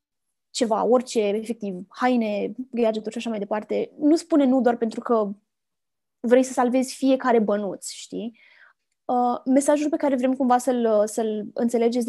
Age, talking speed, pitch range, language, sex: 20-39, 140 wpm, 230-275 Hz, Romanian, female